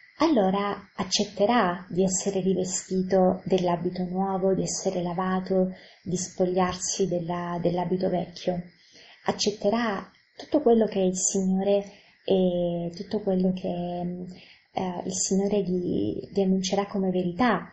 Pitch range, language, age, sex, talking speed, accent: 180-205 Hz, Italian, 20-39, female, 110 wpm, native